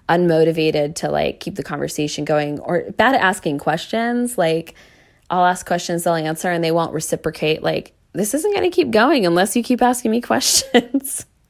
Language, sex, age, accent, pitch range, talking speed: English, female, 20-39, American, 160-215 Hz, 185 wpm